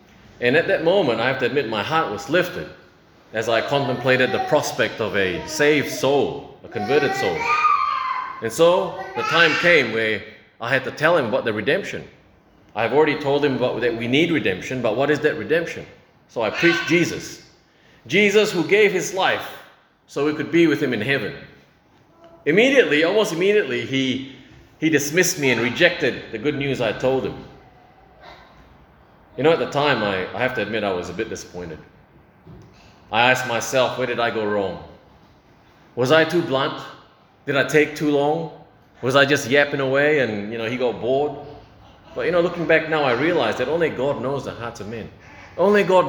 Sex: male